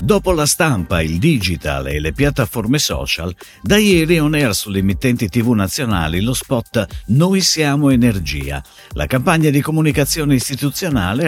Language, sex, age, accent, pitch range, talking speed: Italian, male, 50-69, native, 85-145 Hz, 145 wpm